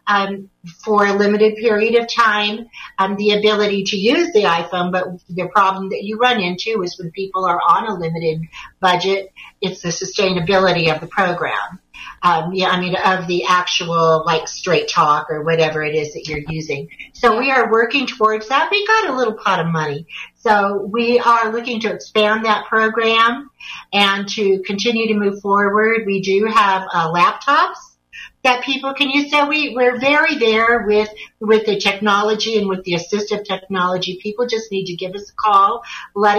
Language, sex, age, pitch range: English, female, 50-69, 180-220 Hz